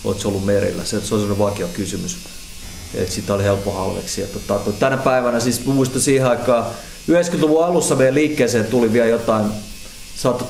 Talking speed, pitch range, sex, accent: 155 wpm, 100-115 Hz, male, native